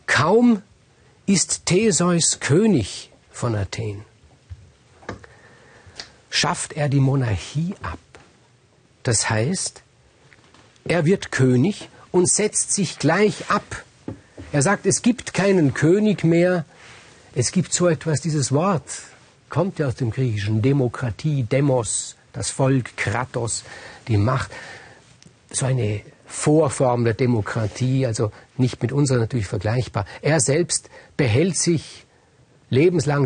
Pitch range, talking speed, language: 120-160 Hz, 110 wpm, German